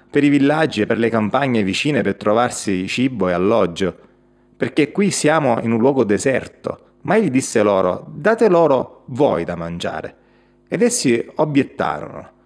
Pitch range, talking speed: 100-150 Hz, 155 wpm